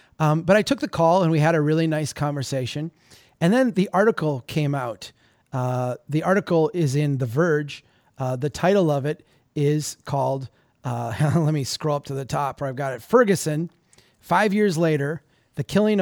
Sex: male